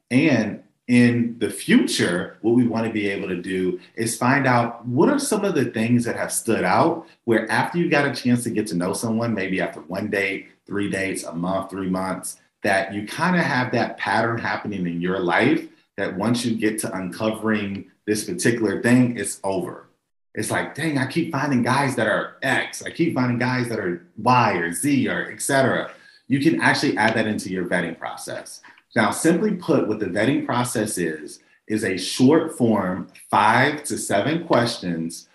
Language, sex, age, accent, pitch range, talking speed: English, male, 40-59, American, 95-125 Hz, 195 wpm